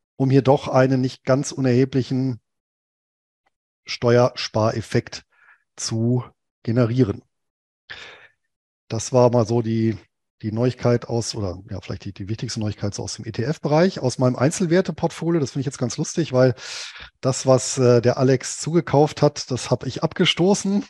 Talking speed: 140 wpm